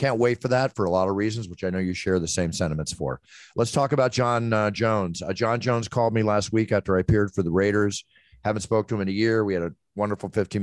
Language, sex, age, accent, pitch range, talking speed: English, male, 40-59, American, 95-110 Hz, 275 wpm